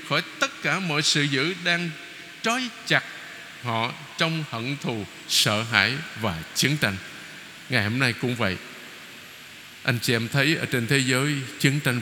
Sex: male